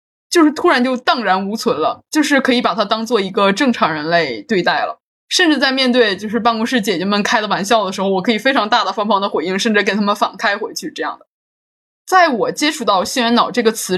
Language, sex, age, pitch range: Chinese, female, 20-39, 200-255 Hz